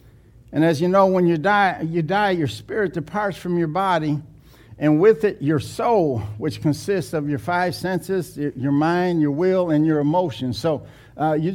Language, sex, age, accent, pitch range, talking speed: English, male, 60-79, American, 140-195 Hz, 185 wpm